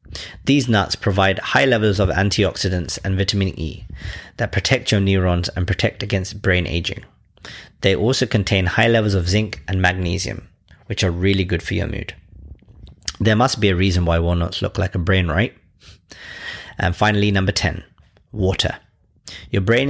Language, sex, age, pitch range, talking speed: English, male, 30-49, 95-110 Hz, 165 wpm